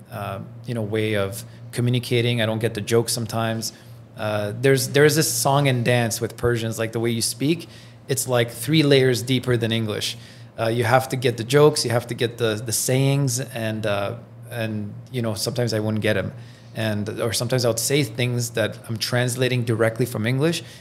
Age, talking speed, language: 20-39, 200 wpm, English